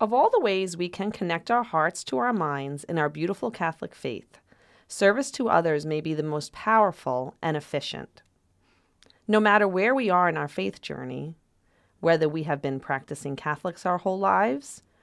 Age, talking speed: 40-59, 180 wpm